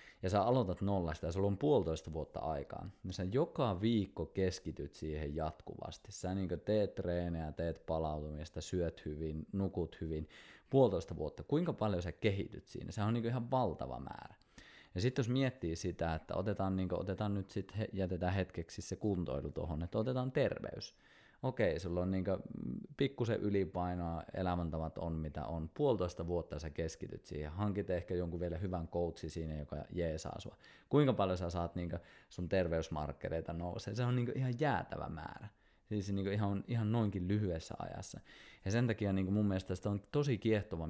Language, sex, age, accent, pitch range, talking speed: Finnish, male, 20-39, native, 85-110 Hz, 175 wpm